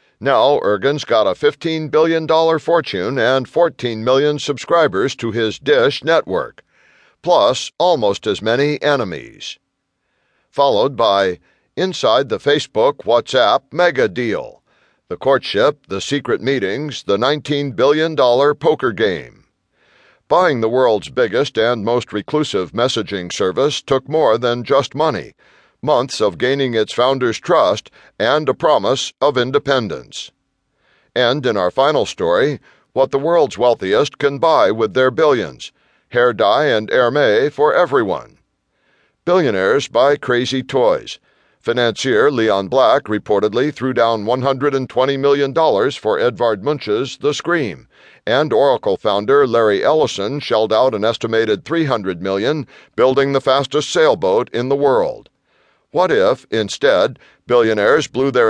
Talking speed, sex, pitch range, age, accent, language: 125 wpm, male, 115-155 Hz, 60-79, American, English